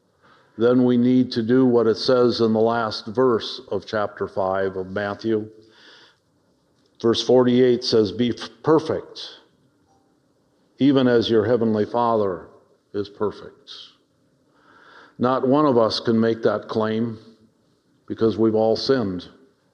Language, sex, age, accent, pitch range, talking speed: English, male, 50-69, American, 110-140 Hz, 125 wpm